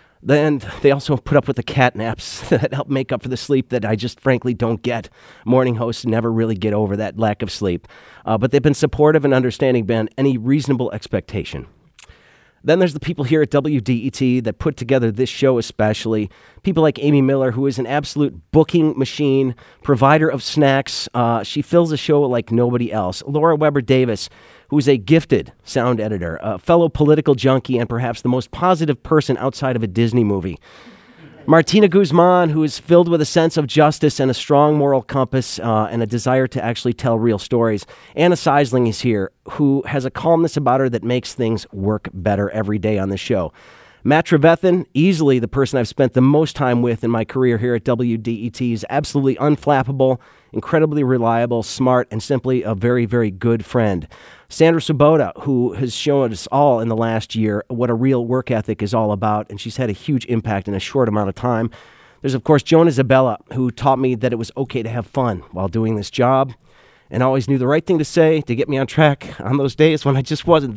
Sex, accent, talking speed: male, American, 205 wpm